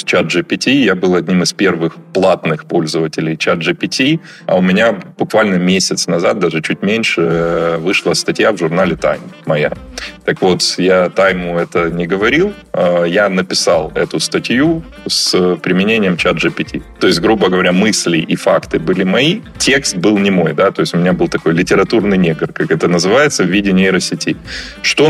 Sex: male